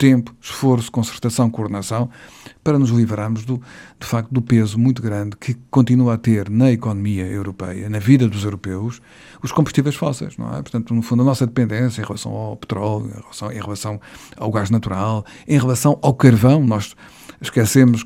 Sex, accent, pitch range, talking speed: male, Portuguese, 110-125 Hz, 175 wpm